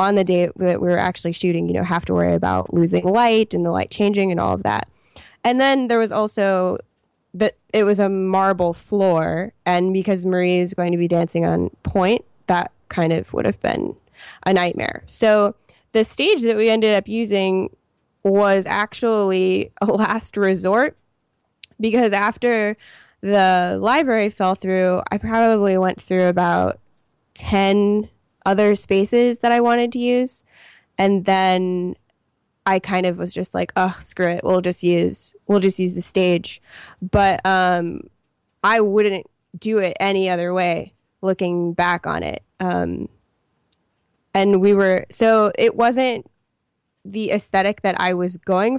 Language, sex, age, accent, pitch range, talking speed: English, female, 10-29, American, 180-215 Hz, 160 wpm